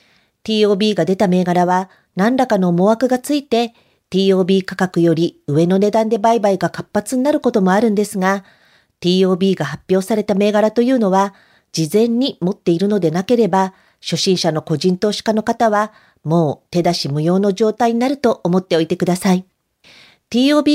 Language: Japanese